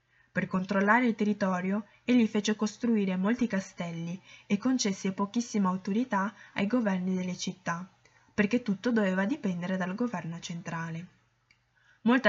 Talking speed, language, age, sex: 120 wpm, Italian, 10-29, female